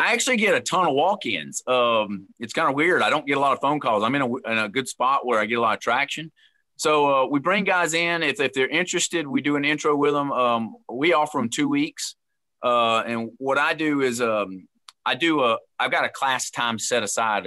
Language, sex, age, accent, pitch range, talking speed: English, male, 30-49, American, 105-135 Hz, 250 wpm